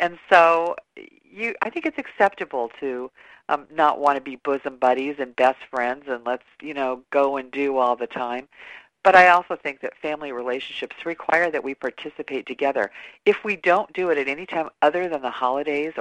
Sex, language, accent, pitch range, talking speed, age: female, English, American, 130-165 Hz, 190 wpm, 50-69